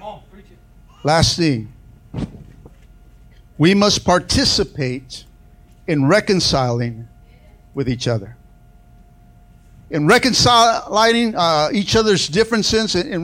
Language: English